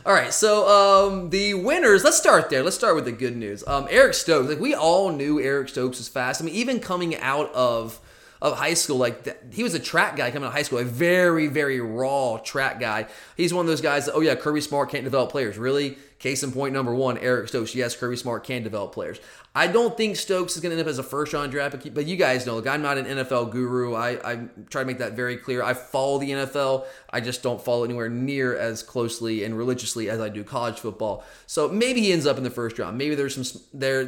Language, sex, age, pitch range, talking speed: English, male, 20-39, 125-160 Hz, 250 wpm